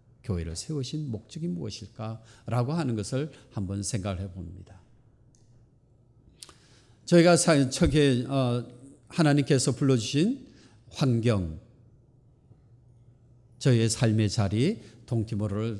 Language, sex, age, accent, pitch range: Korean, male, 50-69, native, 110-140 Hz